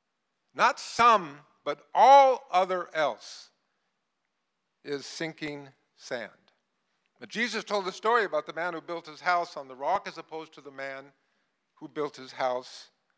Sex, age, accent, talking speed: male, 50-69, American, 150 wpm